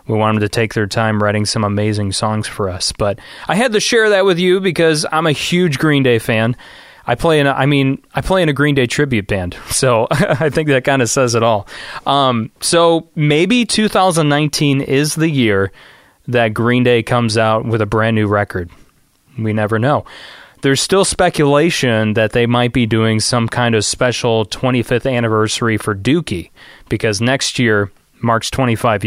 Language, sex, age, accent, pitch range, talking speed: English, male, 30-49, American, 110-145 Hz, 190 wpm